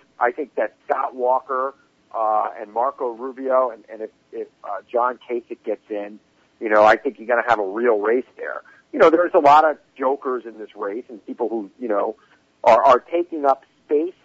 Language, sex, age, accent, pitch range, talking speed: English, male, 50-69, American, 115-150 Hz, 210 wpm